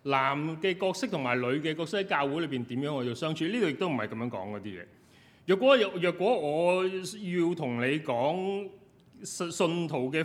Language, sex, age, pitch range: Chinese, male, 30-49, 115-165 Hz